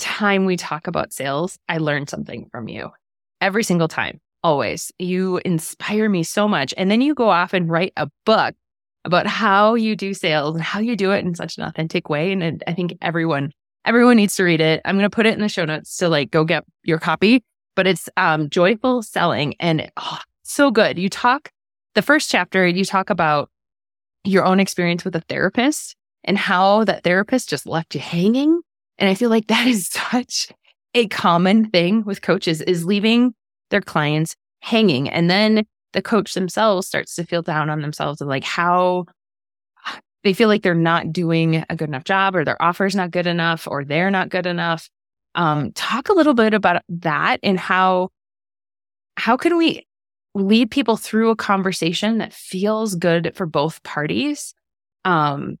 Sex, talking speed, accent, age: female, 190 wpm, American, 20-39